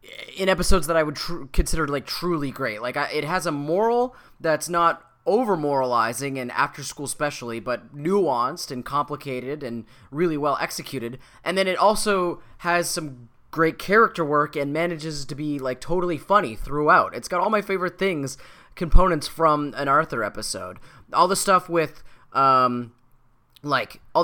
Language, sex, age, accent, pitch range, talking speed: English, male, 20-39, American, 125-165 Hz, 155 wpm